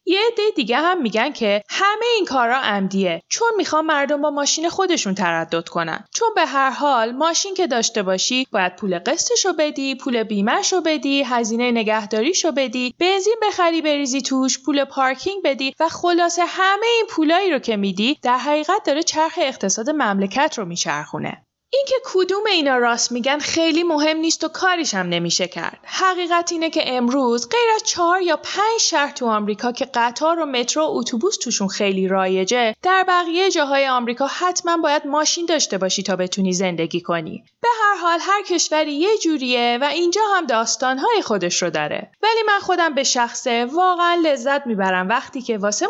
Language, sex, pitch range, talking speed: English, female, 235-345 Hz, 170 wpm